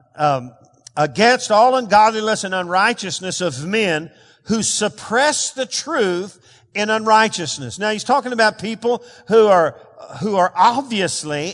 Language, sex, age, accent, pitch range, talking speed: English, male, 50-69, American, 155-230 Hz, 125 wpm